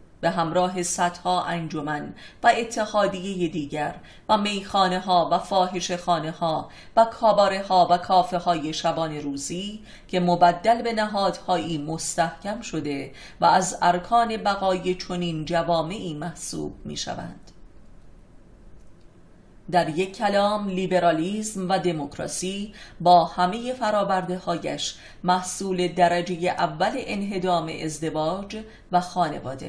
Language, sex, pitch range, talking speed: Persian, female, 165-200 Hz, 105 wpm